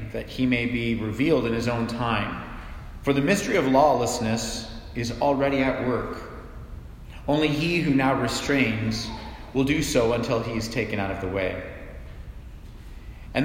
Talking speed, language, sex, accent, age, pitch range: 155 wpm, English, male, American, 40-59, 110-130 Hz